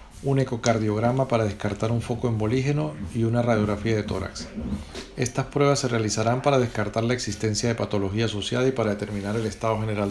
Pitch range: 110-125 Hz